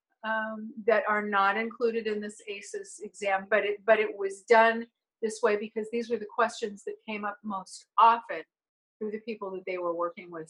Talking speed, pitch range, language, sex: 200 wpm, 205-235 Hz, English, female